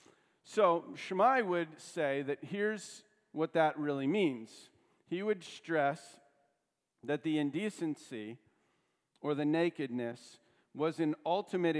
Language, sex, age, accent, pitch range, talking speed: English, male, 50-69, American, 125-170 Hz, 110 wpm